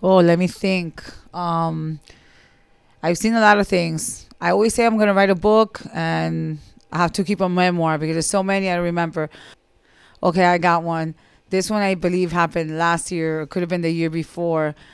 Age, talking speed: 30-49, 210 wpm